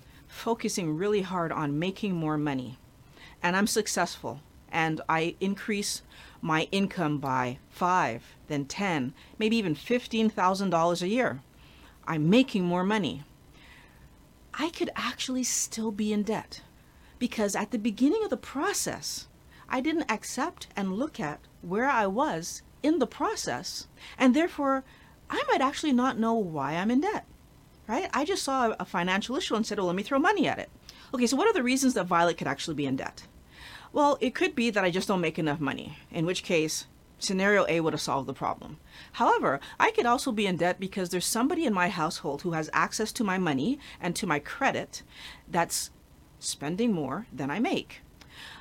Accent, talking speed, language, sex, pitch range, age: American, 175 wpm, English, female, 165-240 Hz, 40-59